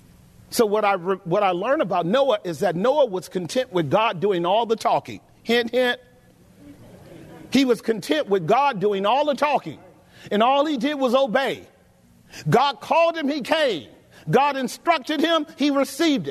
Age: 40-59